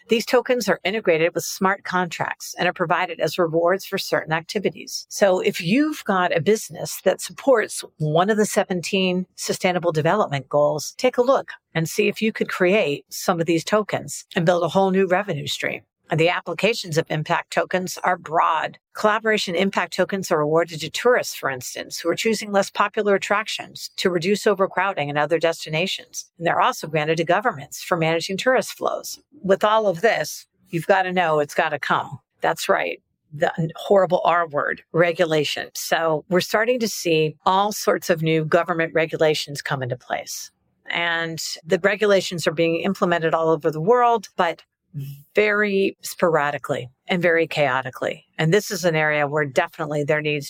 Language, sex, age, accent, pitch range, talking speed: English, female, 50-69, American, 165-205 Hz, 175 wpm